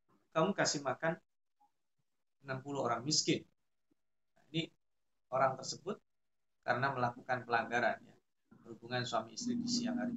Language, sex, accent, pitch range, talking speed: Indonesian, male, native, 125-205 Hz, 110 wpm